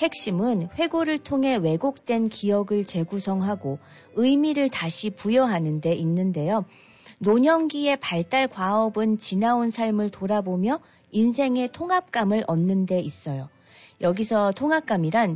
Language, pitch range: Korean, 175-240 Hz